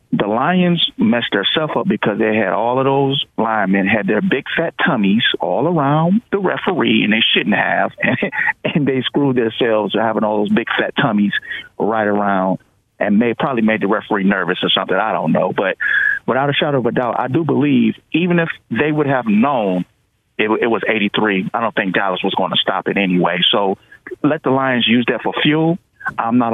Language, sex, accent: English, male, American